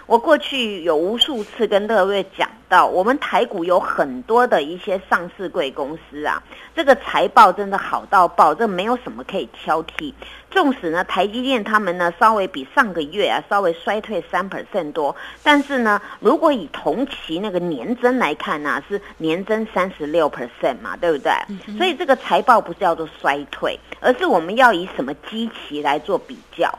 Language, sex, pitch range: Chinese, female, 175-255 Hz